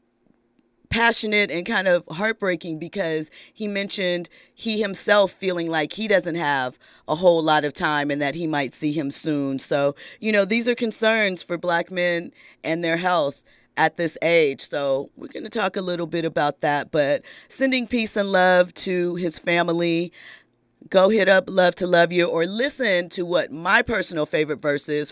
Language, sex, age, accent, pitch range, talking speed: English, female, 30-49, American, 155-190 Hz, 180 wpm